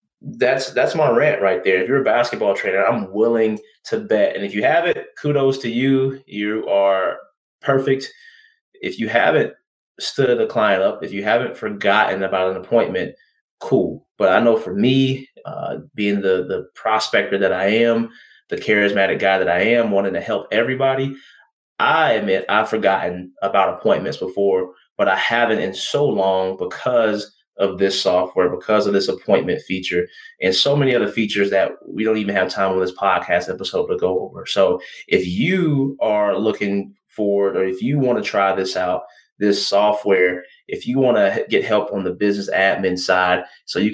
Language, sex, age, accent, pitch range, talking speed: English, male, 20-39, American, 95-135 Hz, 180 wpm